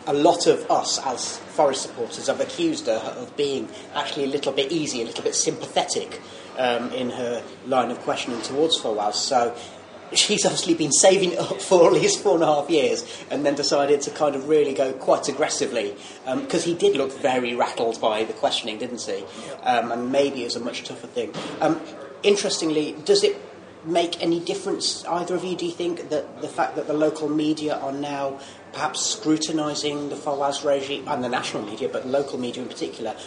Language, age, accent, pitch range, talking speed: English, 30-49, British, 140-175 Hz, 200 wpm